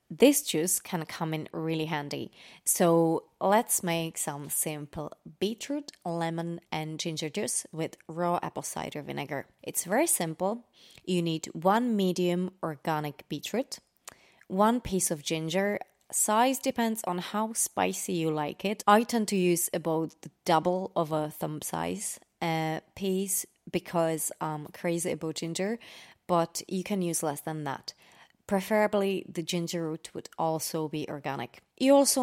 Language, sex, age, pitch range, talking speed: English, female, 20-39, 160-205 Hz, 145 wpm